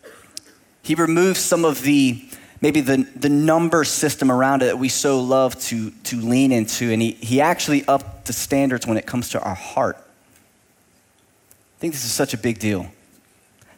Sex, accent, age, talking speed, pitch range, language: male, American, 20-39, 185 wpm, 120-165 Hz, English